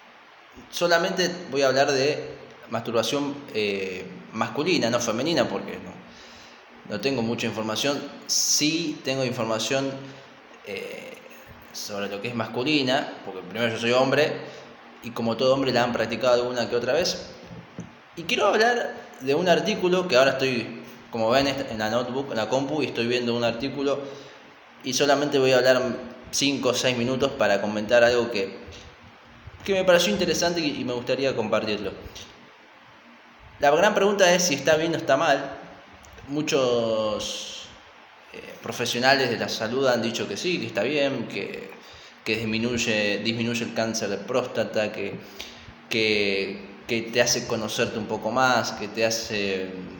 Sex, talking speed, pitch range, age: male, 155 wpm, 110-140 Hz, 20-39